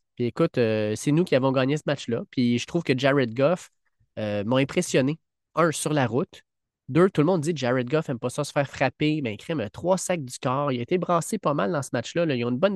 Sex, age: male, 20-39